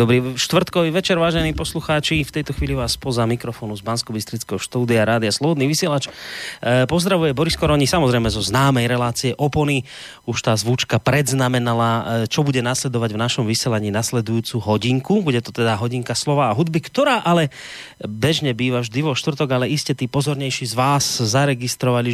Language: Slovak